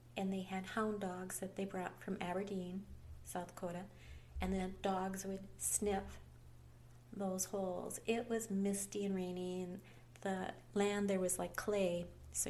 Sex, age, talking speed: female, 30-49, 155 wpm